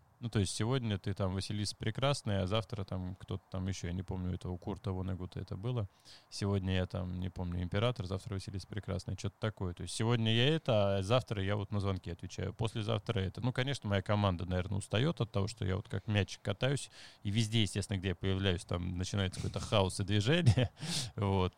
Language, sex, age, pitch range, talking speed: Russian, male, 20-39, 95-115 Hz, 210 wpm